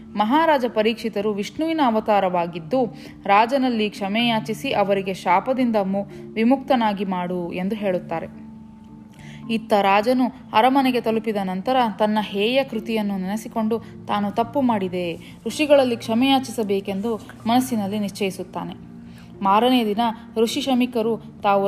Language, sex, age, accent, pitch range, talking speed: Kannada, female, 20-39, native, 190-235 Hz, 95 wpm